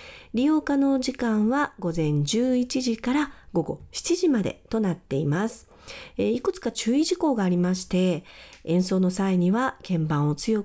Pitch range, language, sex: 175-260 Hz, Japanese, female